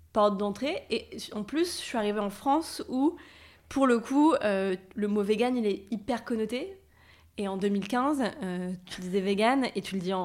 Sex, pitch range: female, 190-230 Hz